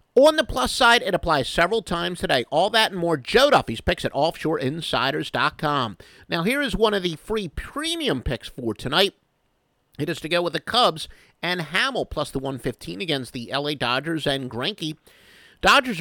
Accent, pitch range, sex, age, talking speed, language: American, 135-185 Hz, male, 50-69, 185 wpm, English